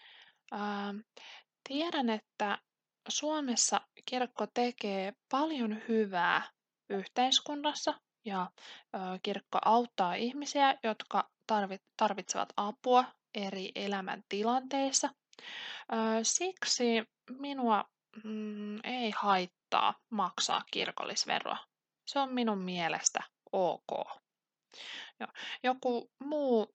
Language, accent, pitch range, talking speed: Finnish, native, 195-260 Hz, 70 wpm